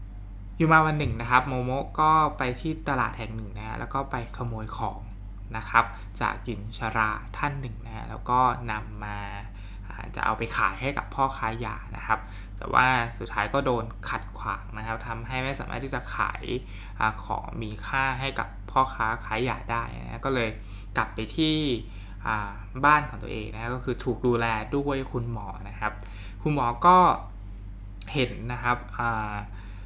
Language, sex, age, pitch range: Thai, male, 20-39, 105-125 Hz